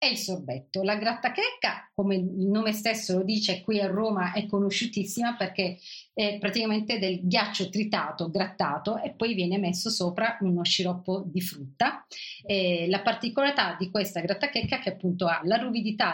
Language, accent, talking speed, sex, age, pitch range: Italian, native, 160 wpm, female, 40-59, 175-220 Hz